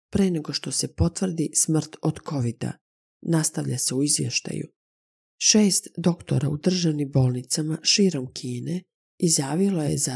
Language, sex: Croatian, female